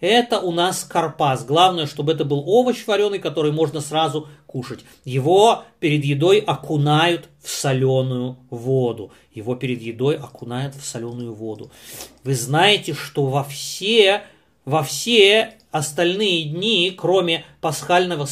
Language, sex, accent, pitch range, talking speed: Russian, male, native, 150-230 Hz, 125 wpm